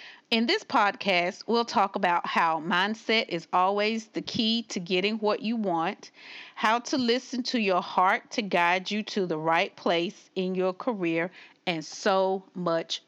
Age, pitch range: 40-59, 180-230 Hz